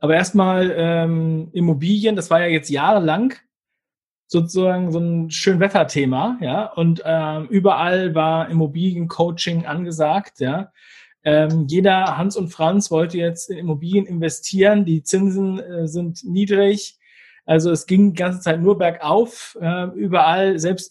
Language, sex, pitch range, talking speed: German, male, 165-195 Hz, 140 wpm